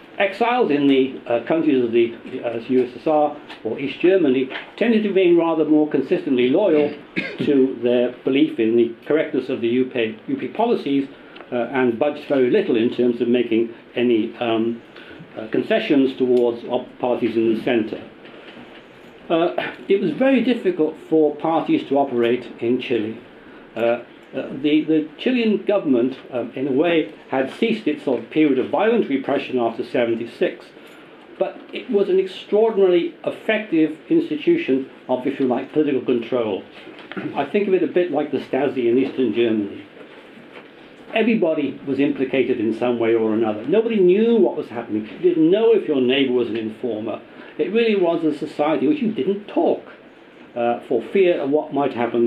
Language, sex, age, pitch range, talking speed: English, male, 60-79, 120-190 Hz, 165 wpm